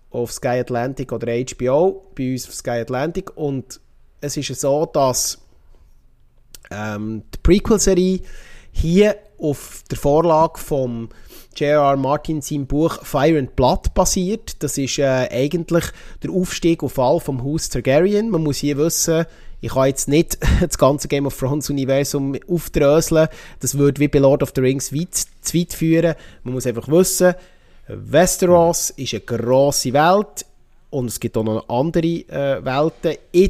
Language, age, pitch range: German, 30-49, 125-165 Hz